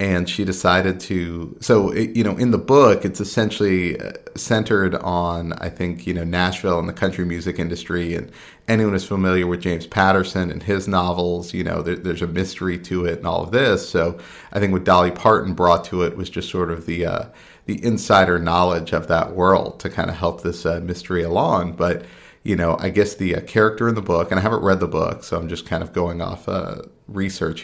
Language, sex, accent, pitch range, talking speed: English, male, American, 85-100 Hz, 215 wpm